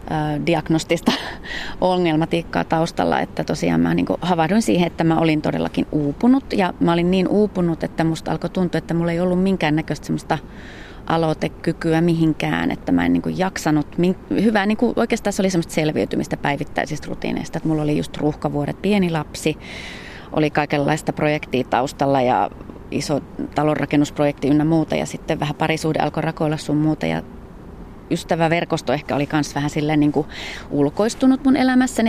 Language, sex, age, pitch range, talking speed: Finnish, female, 30-49, 145-170 Hz, 150 wpm